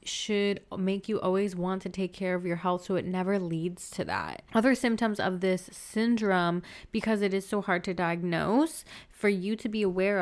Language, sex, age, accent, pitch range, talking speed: English, female, 20-39, American, 180-215 Hz, 200 wpm